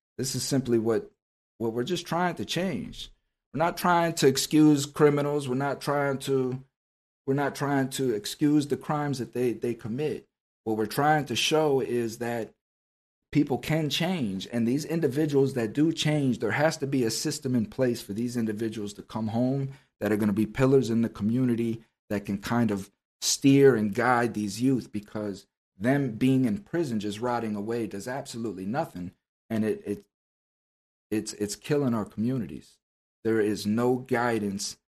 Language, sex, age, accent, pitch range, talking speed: English, male, 50-69, American, 110-145 Hz, 175 wpm